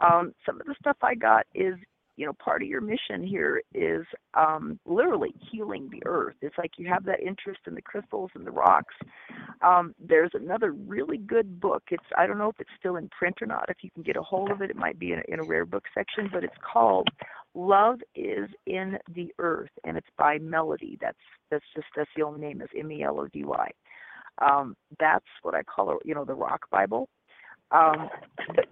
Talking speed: 210 wpm